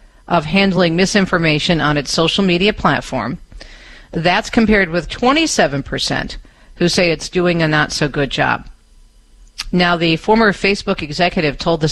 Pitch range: 145-185 Hz